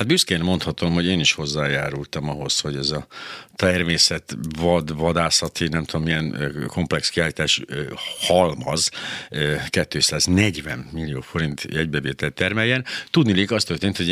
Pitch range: 75-95 Hz